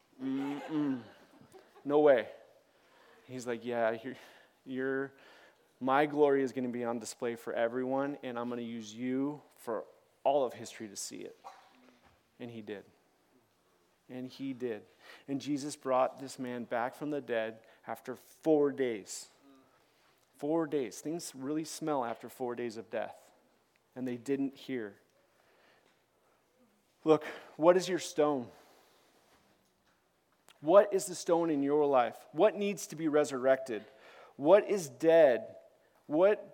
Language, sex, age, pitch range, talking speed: English, male, 30-49, 130-175 Hz, 140 wpm